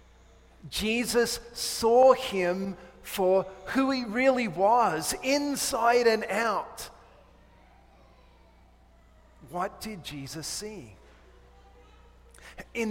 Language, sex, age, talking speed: English, male, 40-59, 75 wpm